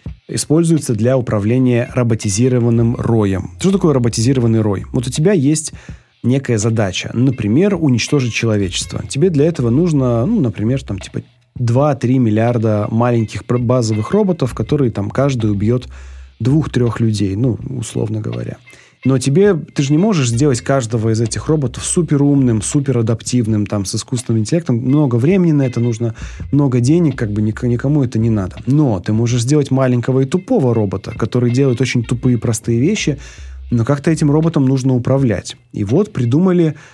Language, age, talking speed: Russian, 30-49, 155 wpm